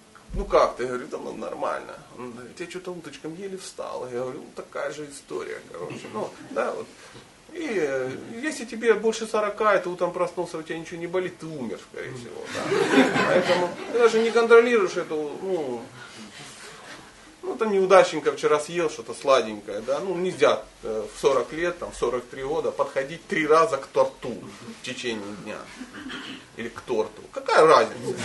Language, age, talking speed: Russian, 30-49, 160 wpm